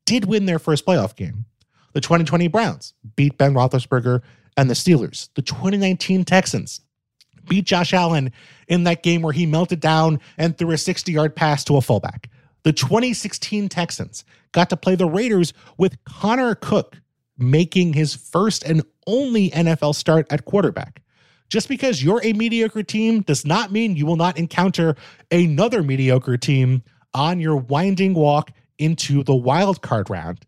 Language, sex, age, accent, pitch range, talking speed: English, male, 30-49, American, 135-195 Hz, 160 wpm